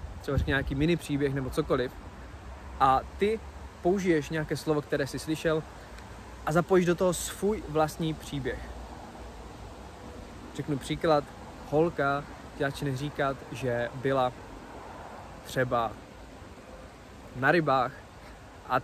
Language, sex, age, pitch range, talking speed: Czech, male, 20-39, 105-155 Hz, 100 wpm